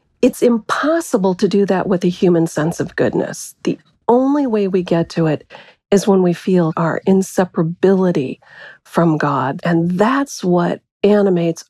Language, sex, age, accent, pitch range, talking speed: English, female, 40-59, American, 165-205 Hz, 155 wpm